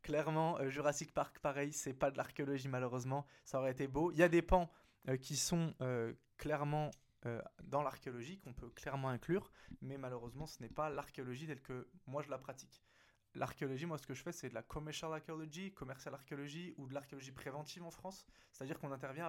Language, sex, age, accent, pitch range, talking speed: French, male, 20-39, French, 125-150 Hz, 200 wpm